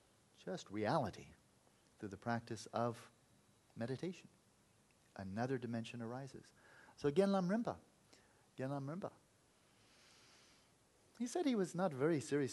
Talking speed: 110 wpm